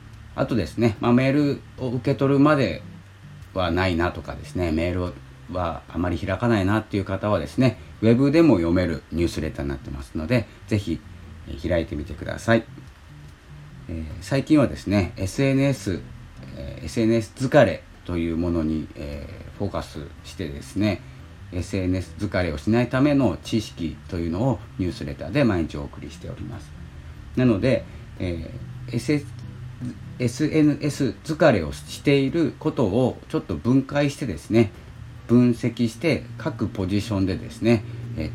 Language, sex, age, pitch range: Japanese, male, 40-59, 85-120 Hz